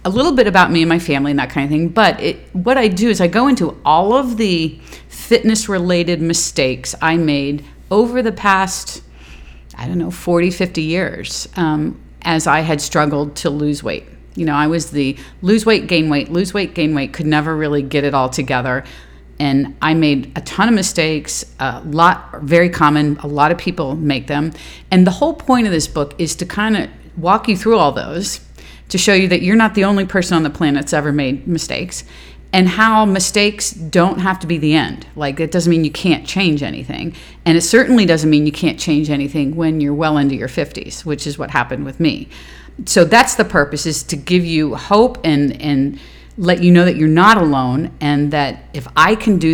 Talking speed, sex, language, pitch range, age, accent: 215 wpm, female, English, 145-185 Hz, 40-59, American